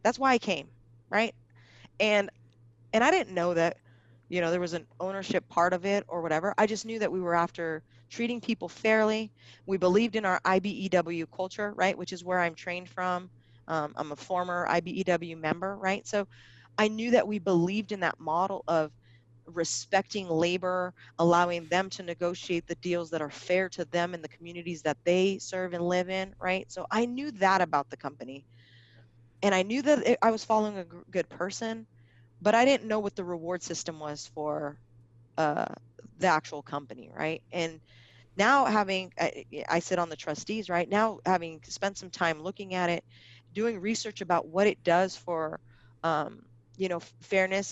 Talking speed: 185 wpm